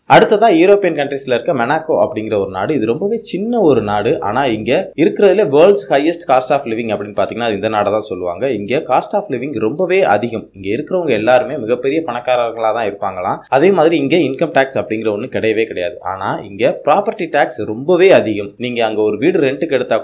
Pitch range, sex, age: 110-160 Hz, male, 20-39